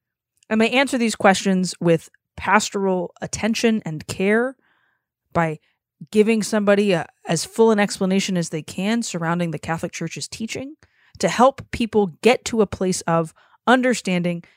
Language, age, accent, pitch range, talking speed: English, 20-39, American, 175-230 Hz, 145 wpm